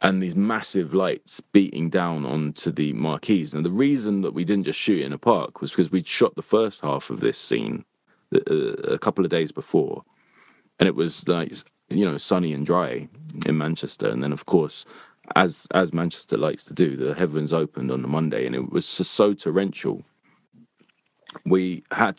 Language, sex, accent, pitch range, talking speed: English, male, British, 80-105 Hz, 190 wpm